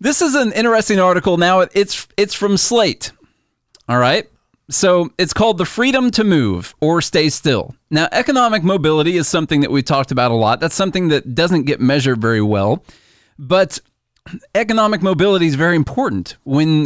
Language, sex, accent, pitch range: English, male, American, 130-170 Hz